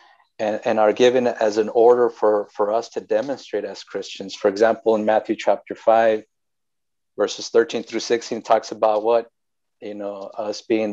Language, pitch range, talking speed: English, 110-170 Hz, 170 wpm